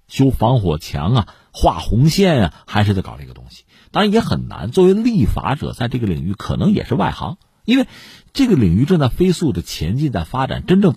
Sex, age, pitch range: male, 50-69, 85-140 Hz